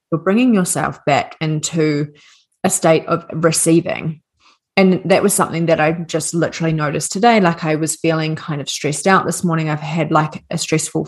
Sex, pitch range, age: female, 155-180 Hz, 30-49